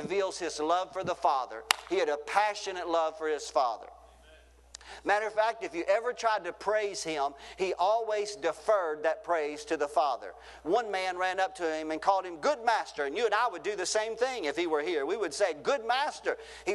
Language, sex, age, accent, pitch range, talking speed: English, male, 50-69, American, 160-210 Hz, 220 wpm